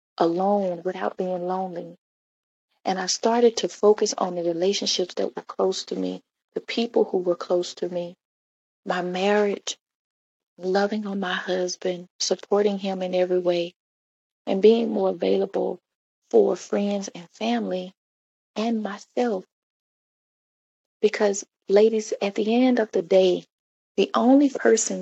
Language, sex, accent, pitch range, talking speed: English, female, American, 180-215 Hz, 135 wpm